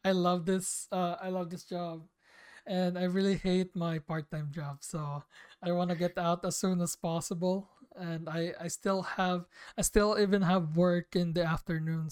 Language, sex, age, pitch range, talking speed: Filipino, male, 20-39, 170-190 Hz, 190 wpm